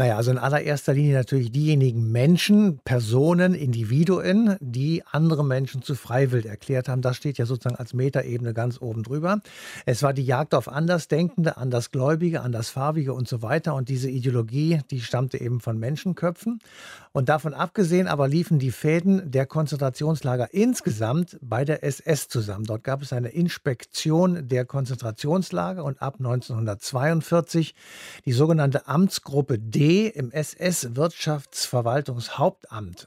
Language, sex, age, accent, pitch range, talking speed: German, male, 60-79, German, 125-160 Hz, 135 wpm